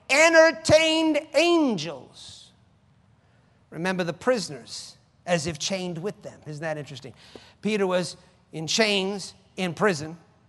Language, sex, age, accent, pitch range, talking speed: English, male, 50-69, American, 165-210 Hz, 110 wpm